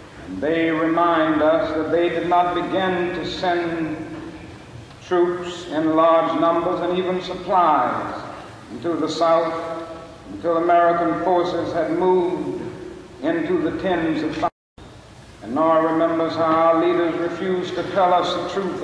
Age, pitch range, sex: 60-79, 165-180 Hz, male